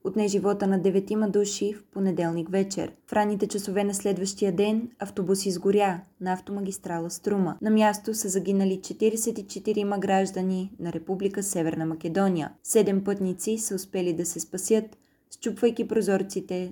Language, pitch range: Bulgarian, 175-215 Hz